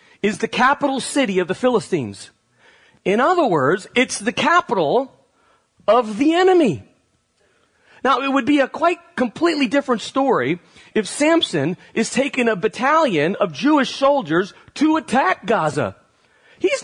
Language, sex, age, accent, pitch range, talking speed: English, male, 40-59, American, 180-265 Hz, 135 wpm